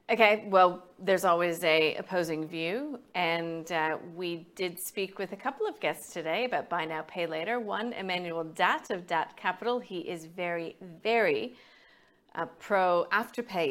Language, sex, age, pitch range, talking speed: English, female, 40-59, 165-230 Hz, 160 wpm